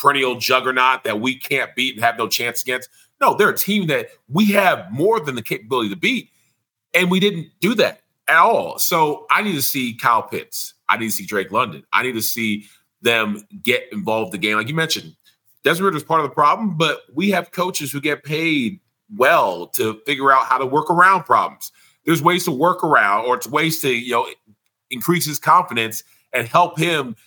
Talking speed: 210 wpm